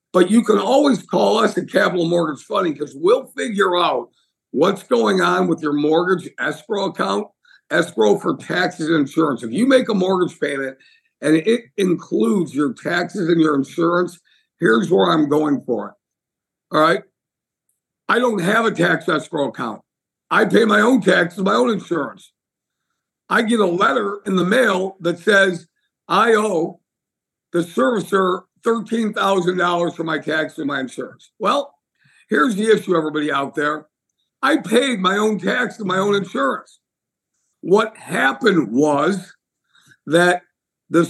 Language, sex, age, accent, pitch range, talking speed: English, male, 60-79, American, 170-215 Hz, 155 wpm